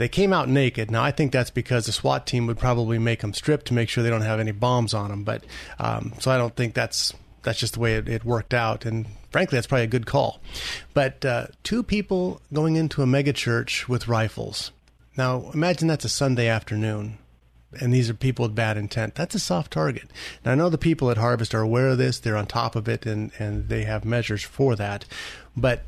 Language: English